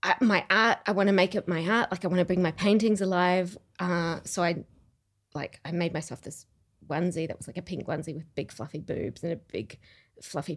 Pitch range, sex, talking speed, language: 170-205 Hz, female, 225 wpm, English